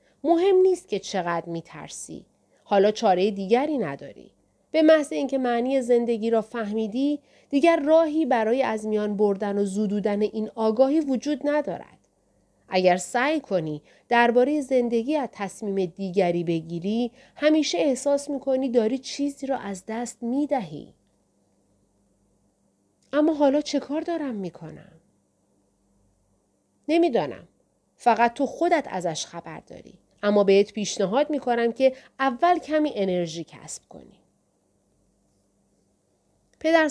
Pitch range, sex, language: 175-270 Hz, female, Persian